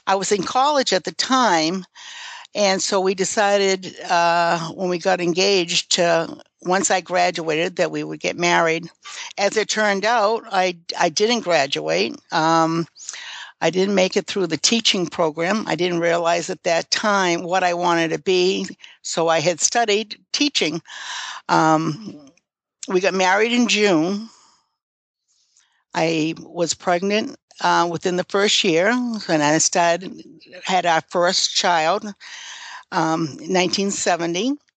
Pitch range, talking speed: 170-200 Hz, 140 wpm